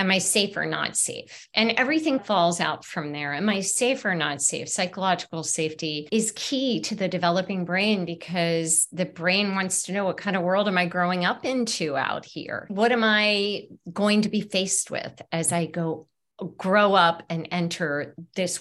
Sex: female